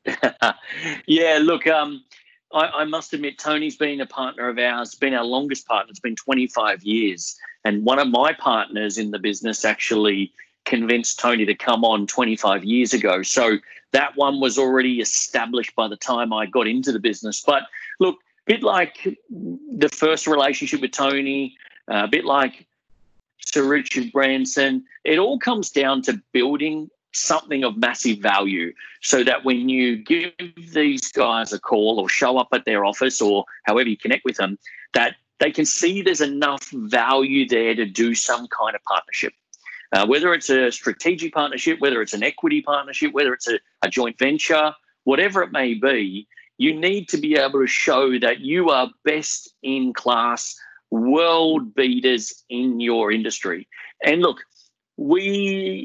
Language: English